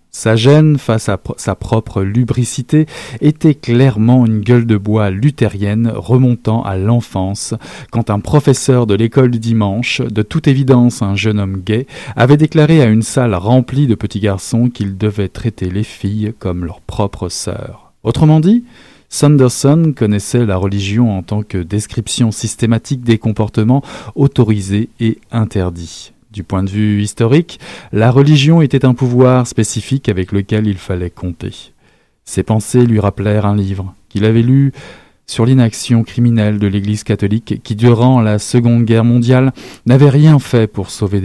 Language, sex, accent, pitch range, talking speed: French, male, French, 105-125 Hz, 155 wpm